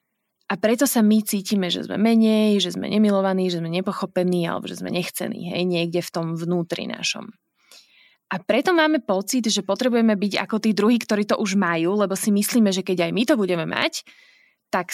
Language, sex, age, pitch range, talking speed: Slovak, female, 20-39, 180-225 Hz, 195 wpm